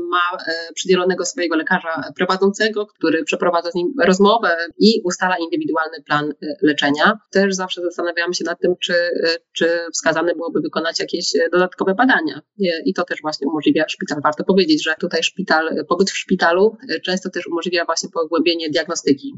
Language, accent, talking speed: Polish, native, 150 wpm